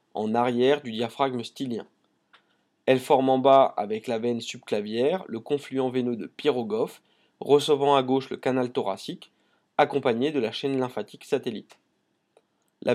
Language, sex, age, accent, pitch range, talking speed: French, male, 20-39, French, 120-140 Hz, 145 wpm